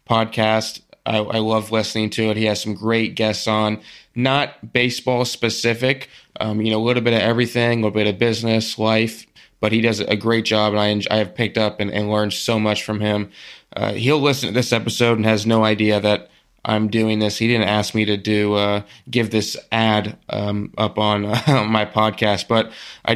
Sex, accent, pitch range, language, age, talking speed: male, American, 105-115 Hz, English, 20-39, 210 wpm